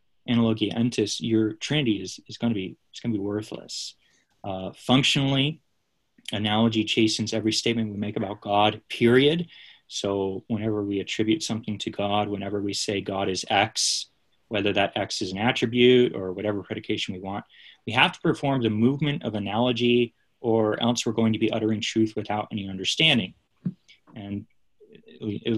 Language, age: English, 20-39